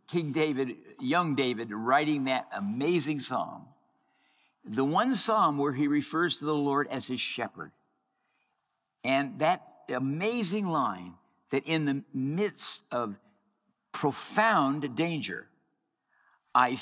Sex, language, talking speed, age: male, English, 115 wpm, 60-79